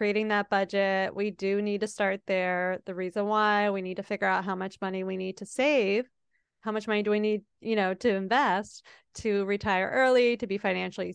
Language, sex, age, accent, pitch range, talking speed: English, female, 30-49, American, 195-220 Hz, 215 wpm